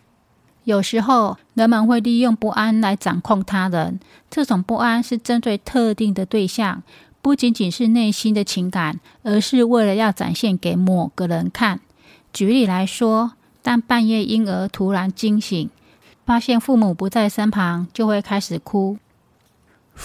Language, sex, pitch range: Chinese, female, 195-235 Hz